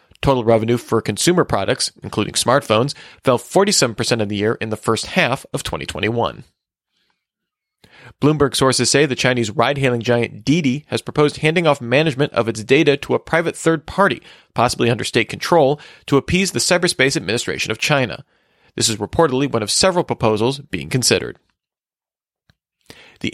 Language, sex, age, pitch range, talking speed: English, male, 40-59, 115-150 Hz, 155 wpm